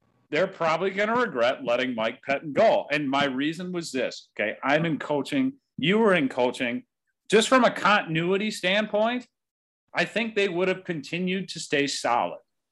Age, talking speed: 40-59, 170 wpm